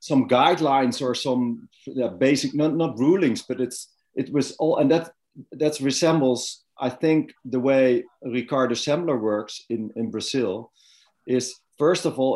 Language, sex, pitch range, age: English, male, 120-140 Hz, 40-59